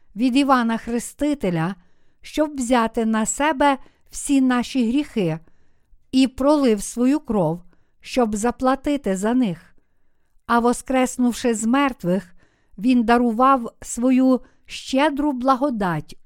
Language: Ukrainian